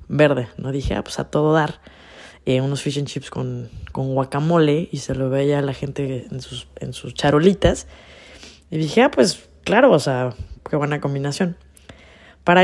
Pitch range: 120-145 Hz